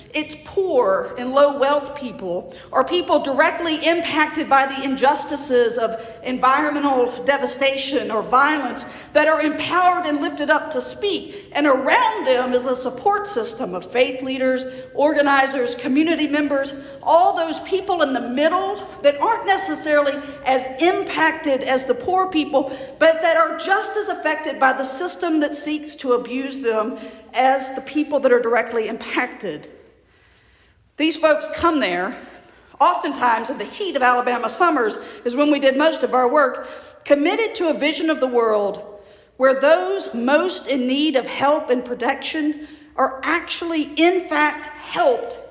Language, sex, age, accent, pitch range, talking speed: English, female, 50-69, American, 260-325 Hz, 150 wpm